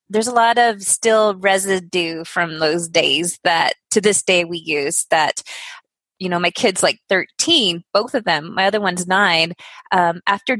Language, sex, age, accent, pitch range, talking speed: English, female, 20-39, American, 195-255 Hz, 175 wpm